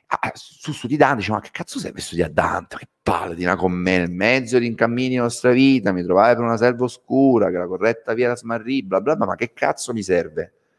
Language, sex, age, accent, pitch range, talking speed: Italian, male, 30-49, native, 90-115 Hz, 260 wpm